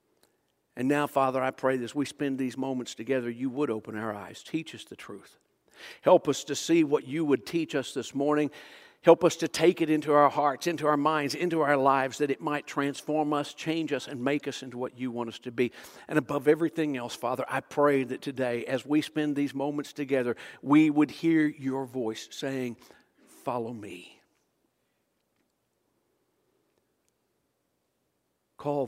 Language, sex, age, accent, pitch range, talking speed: English, male, 60-79, American, 130-175 Hz, 180 wpm